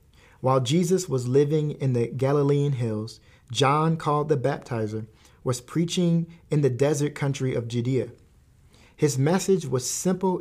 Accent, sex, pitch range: American, male, 125-165 Hz